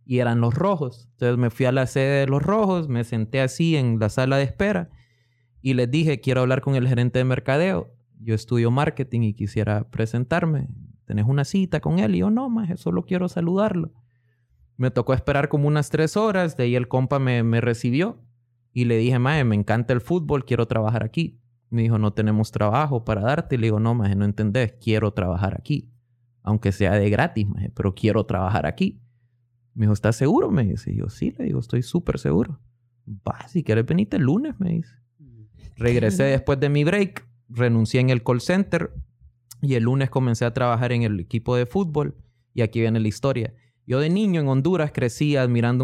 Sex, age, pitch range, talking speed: male, 20-39, 110-140 Hz, 205 wpm